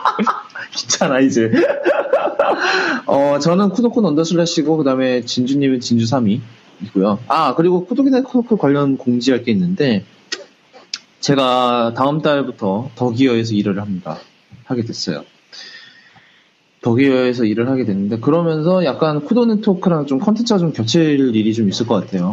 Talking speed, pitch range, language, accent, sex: 115 wpm, 105-160 Hz, English, Korean, male